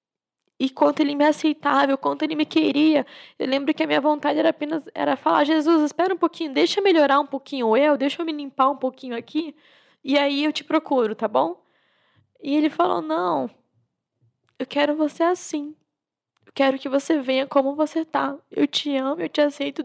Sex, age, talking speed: female, 10-29, 195 wpm